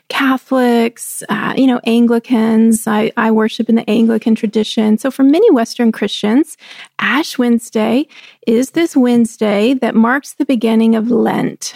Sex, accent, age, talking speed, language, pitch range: female, American, 30-49, 145 wpm, English, 225-280 Hz